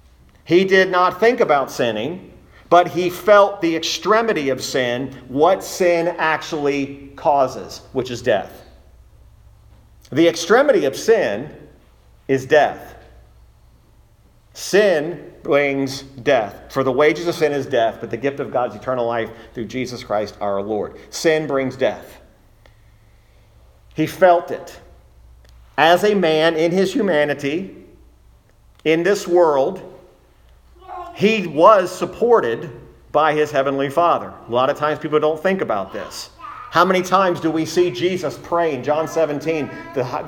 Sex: male